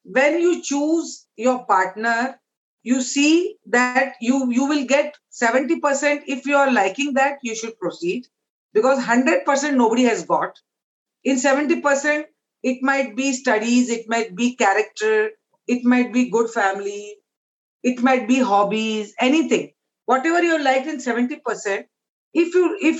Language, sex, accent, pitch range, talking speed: English, female, Indian, 230-285 Hz, 135 wpm